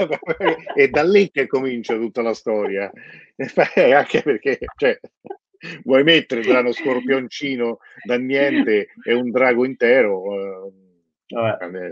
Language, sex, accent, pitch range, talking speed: Italian, male, native, 100-130 Hz, 120 wpm